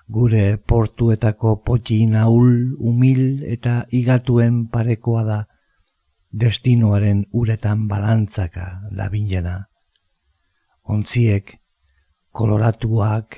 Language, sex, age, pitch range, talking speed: Spanish, male, 50-69, 100-125 Hz, 70 wpm